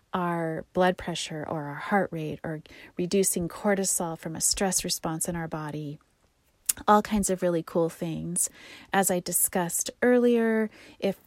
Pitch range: 175-215 Hz